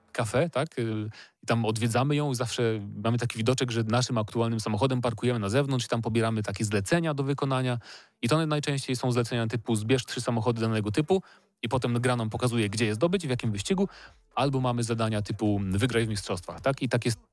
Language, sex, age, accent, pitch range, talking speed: Polish, male, 30-49, native, 110-130 Hz, 195 wpm